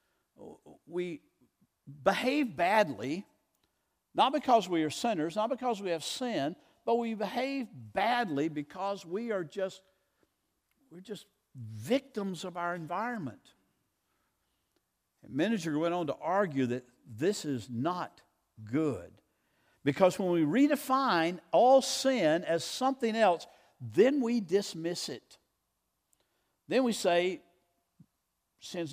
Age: 60-79